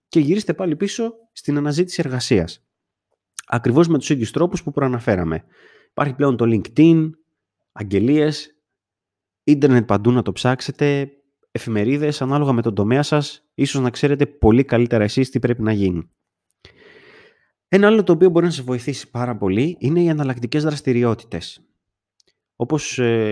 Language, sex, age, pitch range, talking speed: Greek, male, 30-49, 110-150 Hz, 140 wpm